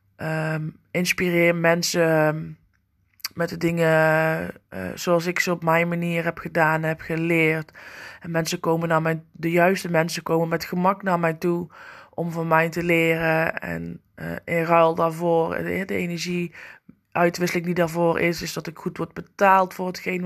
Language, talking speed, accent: Dutch, 165 wpm, Dutch